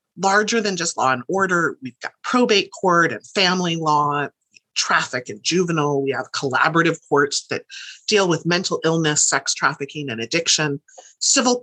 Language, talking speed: English, 155 wpm